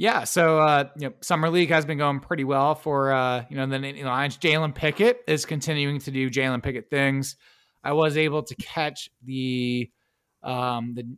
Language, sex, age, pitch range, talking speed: English, male, 20-39, 125-150 Hz, 205 wpm